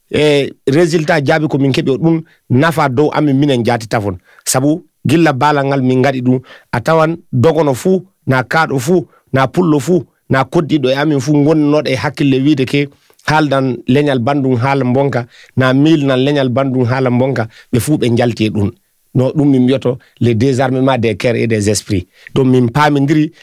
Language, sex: French, male